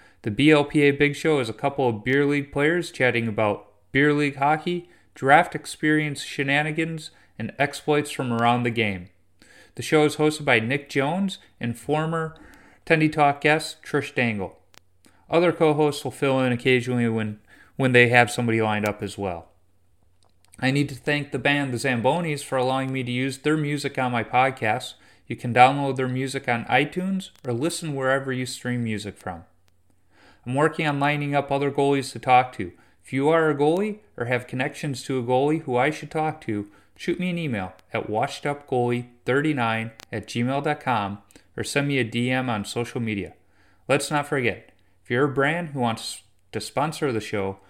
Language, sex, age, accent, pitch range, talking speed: English, male, 30-49, American, 110-145 Hz, 175 wpm